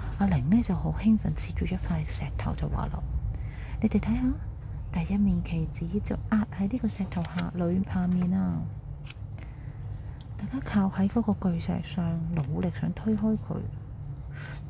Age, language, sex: 30-49, Chinese, female